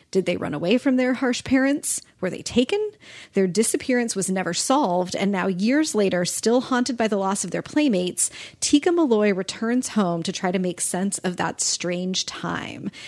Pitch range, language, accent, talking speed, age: 185-225 Hz, English, American, 190 wpm, 30-49